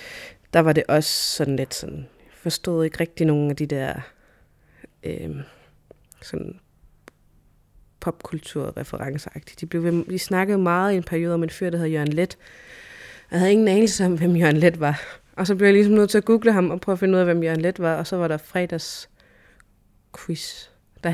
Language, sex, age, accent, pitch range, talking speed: Danish, female, 30-49, native, 145-185 Hz, 185 wpm